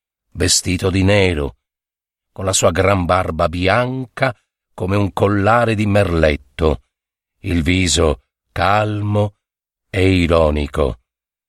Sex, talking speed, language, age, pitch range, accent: male, 100 wpm, Italian, 50-69, 85-105 Hz, native